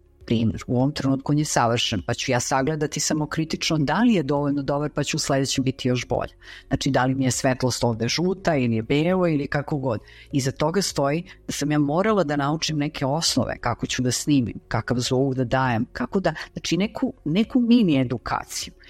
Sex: female